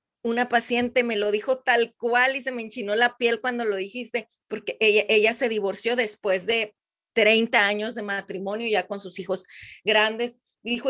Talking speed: 180 wpm